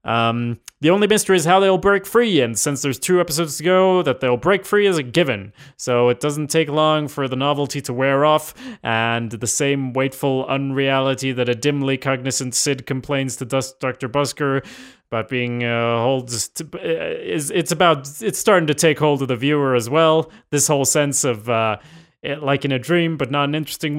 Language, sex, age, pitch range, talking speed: English, male, 30-49, 120-155 Hz, 195 wpm